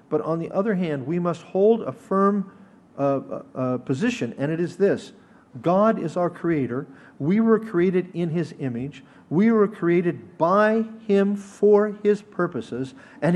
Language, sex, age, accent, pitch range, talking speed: English, male, 50-69, American, 165-225 Hz, 160 wpm